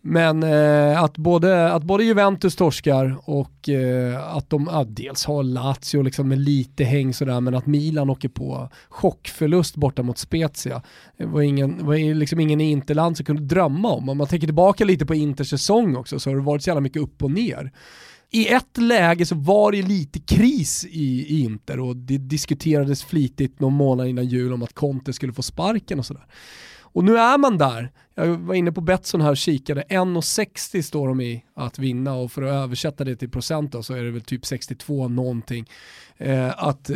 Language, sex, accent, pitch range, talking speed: Swedish, male, native, 130-170 Hz, 195 wpm